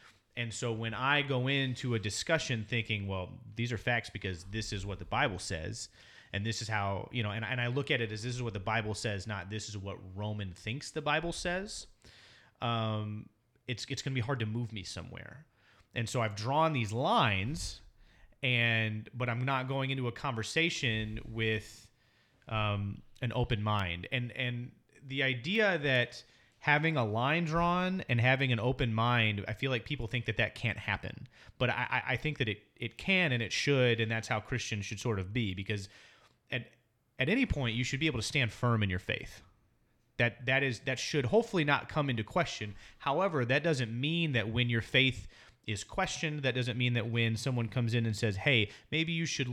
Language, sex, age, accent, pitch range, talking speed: English, male, 30-49, American, 110-130 Hz, 205 wpm